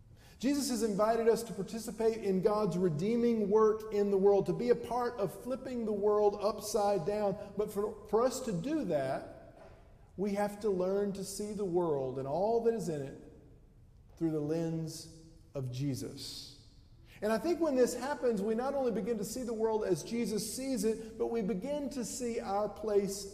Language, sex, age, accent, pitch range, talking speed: English, male, 50-69, American, 150-225 Hz, 190 wpm